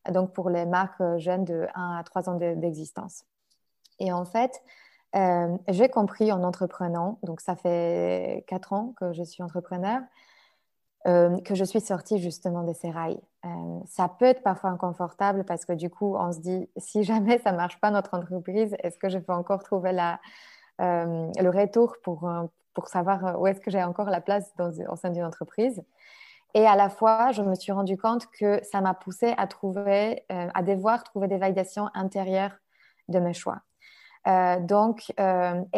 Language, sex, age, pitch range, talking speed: French, female, 20-39, 180-215 Hz, 185 wpm